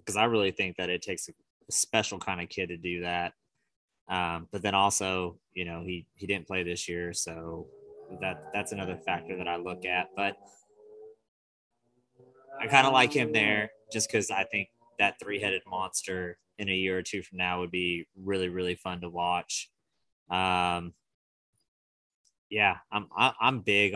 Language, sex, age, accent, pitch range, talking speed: English, male, 20-39, American, 90-100 Hz, 180 wpm